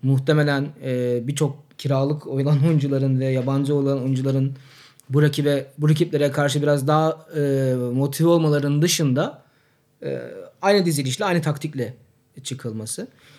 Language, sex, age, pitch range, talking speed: Turkish, male, 30-49, 130-160 Hz, 115 wpm